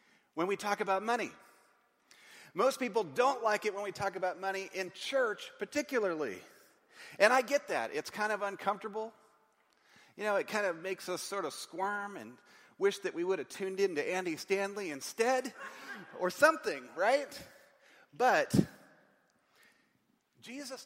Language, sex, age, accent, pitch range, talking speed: English, male, 40-59, American, 165-230 Hz, 150 wpm